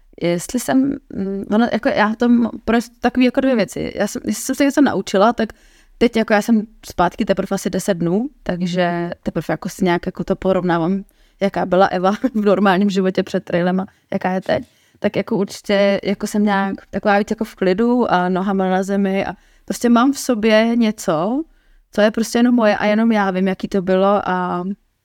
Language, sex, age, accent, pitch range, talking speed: Czech, female, 20-39, native, 190-230 Hz, 190 wpm